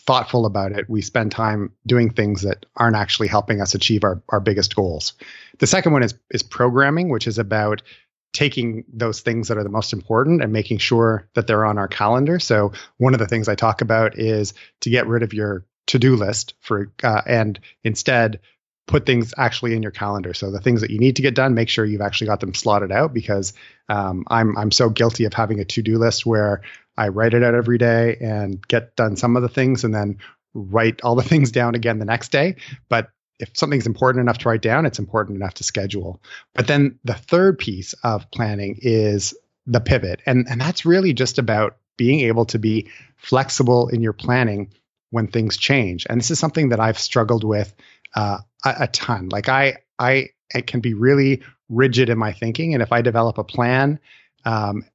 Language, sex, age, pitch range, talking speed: English, male, 30-49, 105-125 Hz, 210 wpm